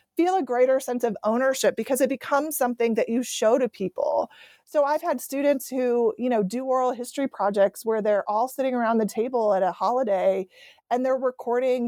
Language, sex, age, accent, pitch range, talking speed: English, female, 30-49, American, 210-255 Hz, 195 wpm